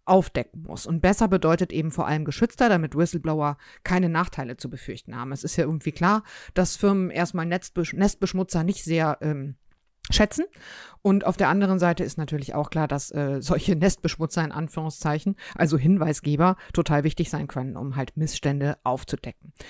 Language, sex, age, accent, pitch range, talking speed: German, female, 50-69, German, 145-185 Hz, 170 wpm